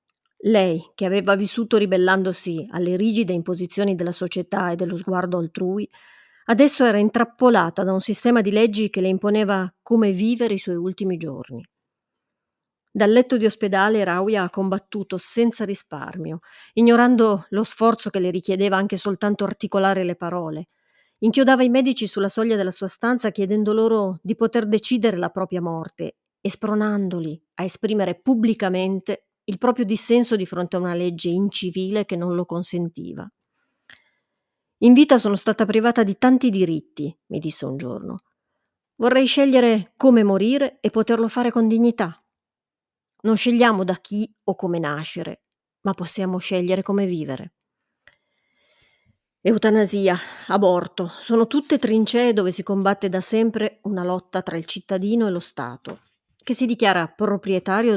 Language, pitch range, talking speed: Italian, 185-225 Hz, 145 wpm